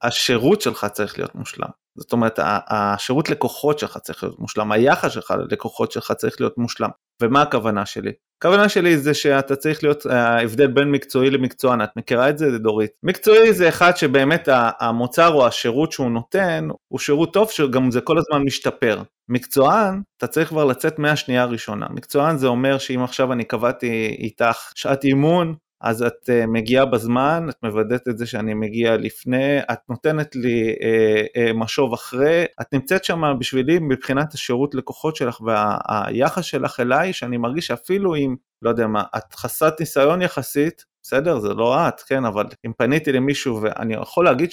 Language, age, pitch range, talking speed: Hebrew, 30-49, 120-155 Hz, 170 wpm